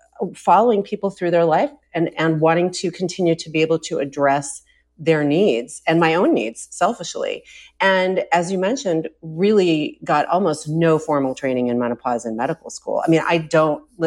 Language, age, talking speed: English, 40-59, 175 wpm